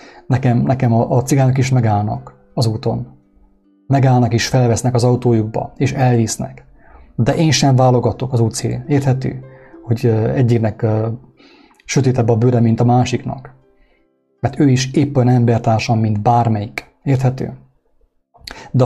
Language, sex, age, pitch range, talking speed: English, male, 30-49, 115-130 Hz, 125 wpm